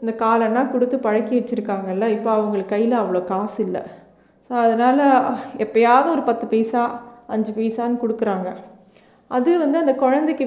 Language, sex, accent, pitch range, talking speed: Tamil, female, native, 215-255 Hz, 140 wpm